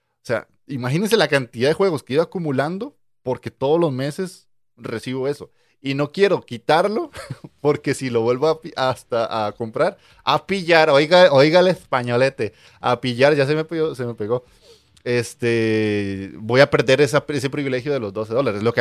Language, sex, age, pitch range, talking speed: Spanish, male, 30-49, 110-145 Hz, 160 wpm